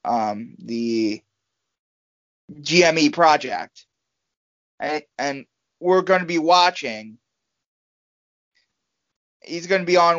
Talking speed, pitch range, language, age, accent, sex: 95 wpm, 175-230 Hz, English, 20-39, American, male